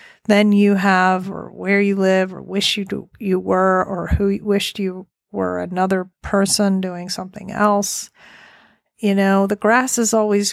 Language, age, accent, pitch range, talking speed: English, 40-59, American, 190-220 Hz, 165 wpm